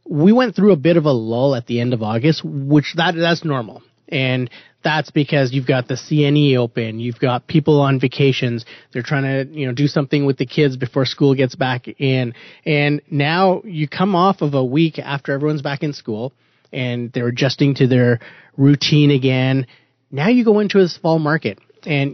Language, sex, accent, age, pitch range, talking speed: English, male, American, 30-49, 125-150 Hz, 200 wpm